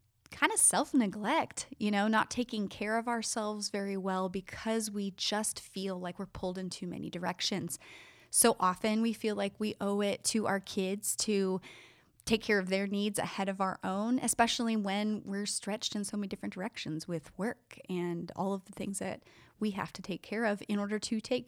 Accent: American